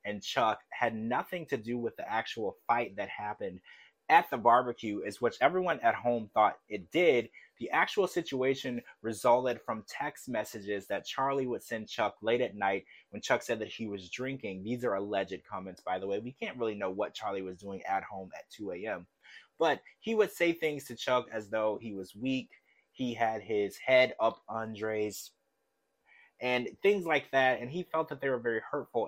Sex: male